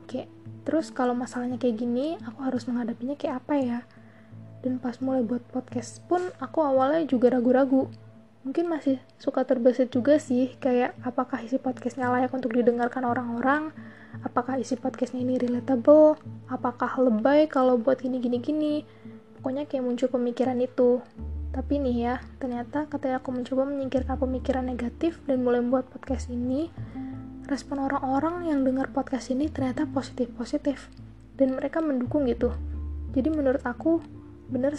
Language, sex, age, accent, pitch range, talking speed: Indonesian, female, 20-39, native, 245-270 Hz, 140 wpm